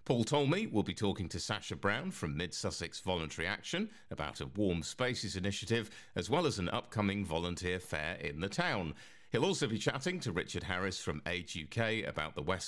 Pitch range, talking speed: 80-120 Hz, 190 wpm